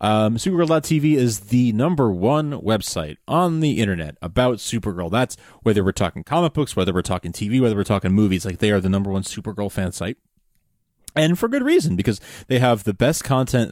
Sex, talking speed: male, 195 wpm